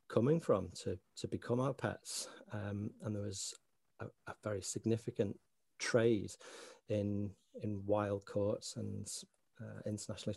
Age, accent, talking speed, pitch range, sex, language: 40-59, British, 135 wpm, 105-120 Hz, male, English